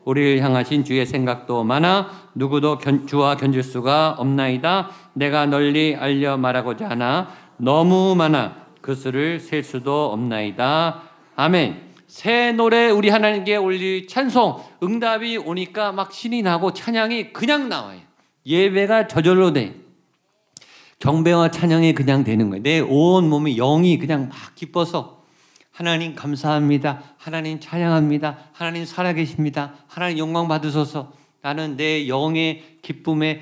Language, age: Korean, 50-69